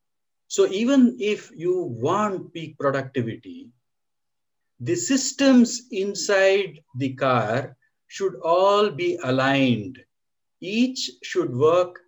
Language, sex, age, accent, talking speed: English, male, 60-79, Indian, 95 wpm